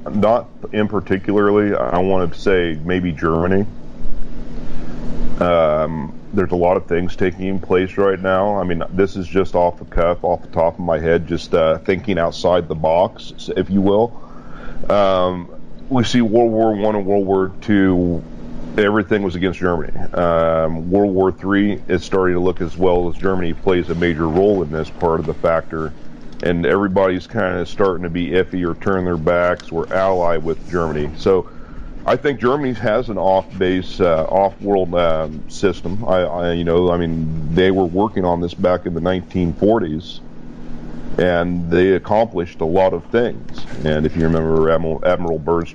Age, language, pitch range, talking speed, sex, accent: 40-59, English, 80-95 Hz, 175 wpm, male, American